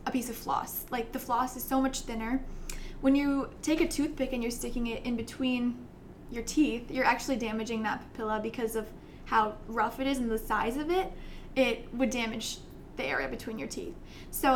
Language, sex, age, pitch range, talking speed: English, female, 10-29, 225-265 Hz, 200 wpm